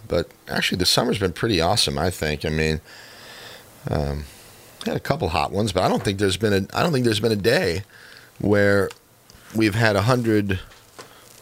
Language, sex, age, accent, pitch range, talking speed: English, male, 40-59, American, 80-105 Hz, 185 wpm